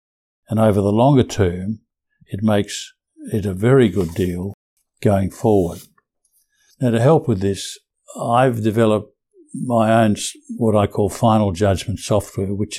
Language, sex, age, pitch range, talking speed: English, male, 60-79, 100-115 Hz, 140 wpm